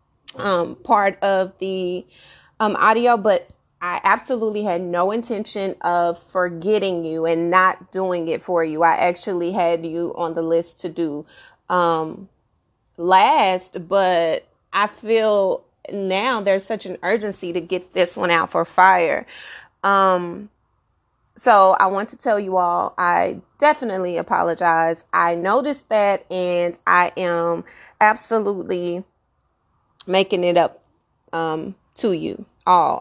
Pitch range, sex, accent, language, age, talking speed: 175-200 Hz, female, American, English, 30-49, 130 wpm